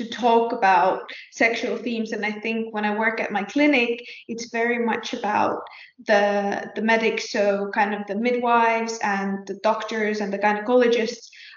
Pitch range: 220-245 Hz